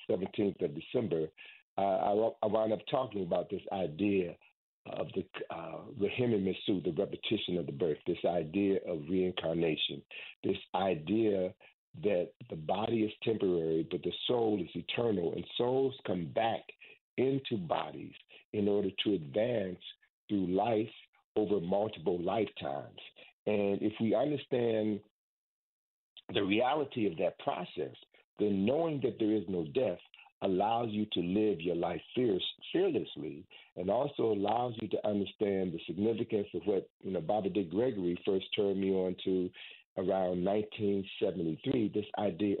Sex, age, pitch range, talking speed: male, 50-69, 90-110 Hz, 140 wpm